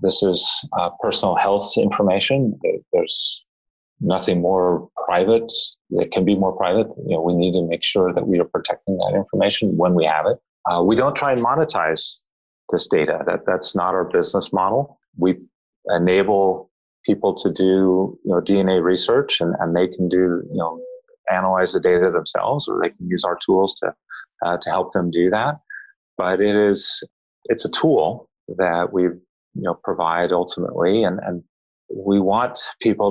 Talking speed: 175 wpm